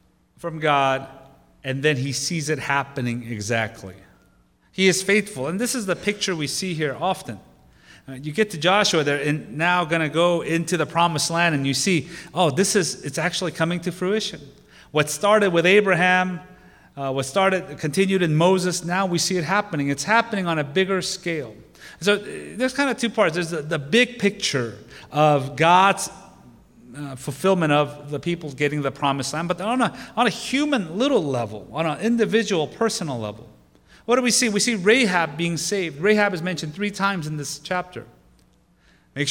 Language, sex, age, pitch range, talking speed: English, male, 30-49, 135-185 Hz, 180 wpm